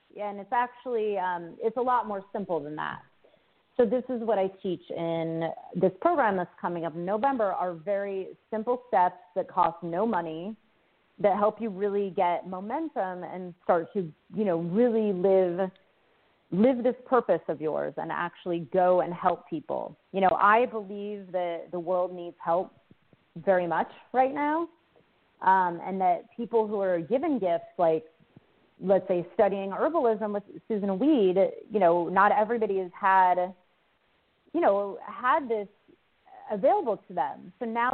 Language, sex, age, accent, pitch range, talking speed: English, female, 30-49, American, 180-230 Hz, 160 wpm